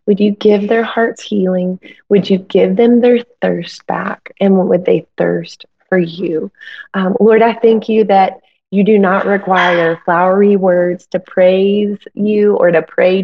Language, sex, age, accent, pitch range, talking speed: English, female, 20-39, American, 190-230 Hz, 170 wpm